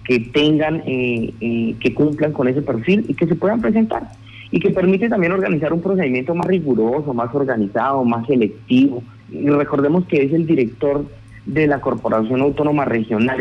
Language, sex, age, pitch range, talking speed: Spanish, male, 30-49, 110-145 Hz, 170 wpm